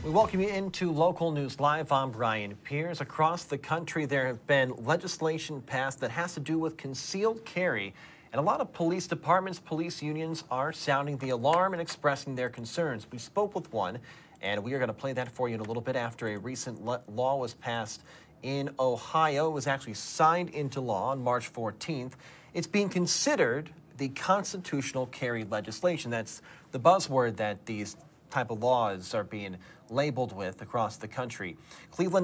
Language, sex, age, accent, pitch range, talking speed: English, male, 40-59, American, 120-165 Hz, 185 wpm